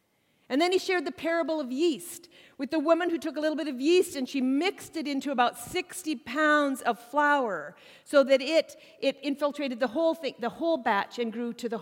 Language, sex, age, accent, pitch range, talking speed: English, female, 50-69, American, 245-310 Hz, 220 wpm